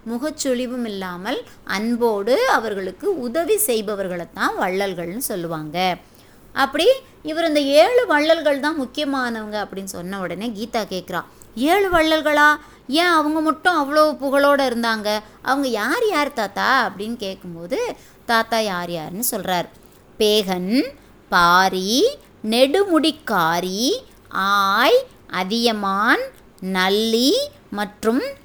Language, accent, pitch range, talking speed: Tamil, native, 195-290 Hz, 95 wpm